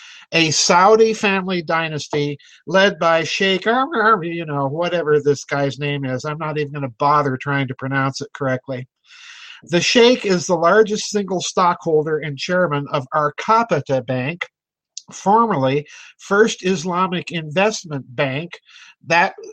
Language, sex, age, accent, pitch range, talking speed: English, male, 50-69, American, 150-195 Hz, 130 wpm